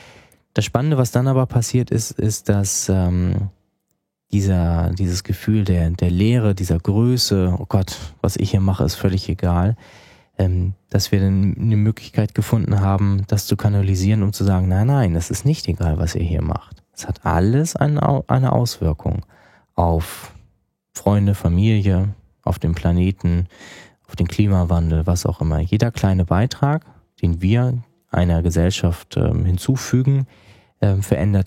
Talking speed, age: 155 wpm, 20-39